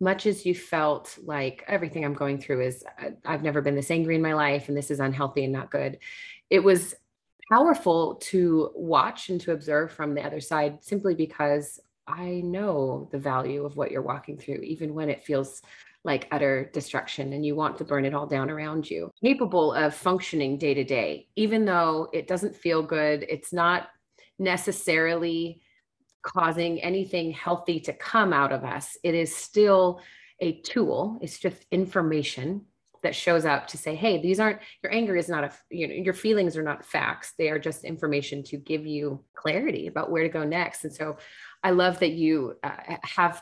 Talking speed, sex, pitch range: 190 wpm, female, 150-180 Hz